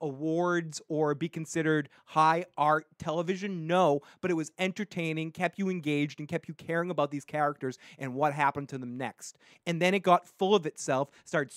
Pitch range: 150-180 Hz